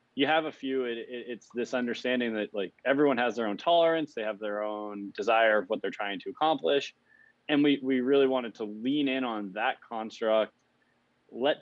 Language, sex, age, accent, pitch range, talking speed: English, male, 20-39, American, 115-140 Hz, 200 wpm